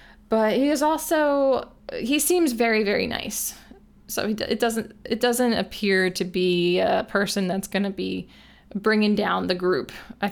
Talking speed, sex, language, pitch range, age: 165 wpm, female, English, 185-220 Hz, 20-39